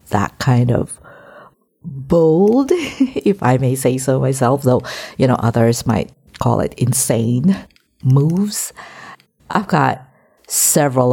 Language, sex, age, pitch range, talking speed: English, female, 50-69, 125-165 Hz, 120 wpm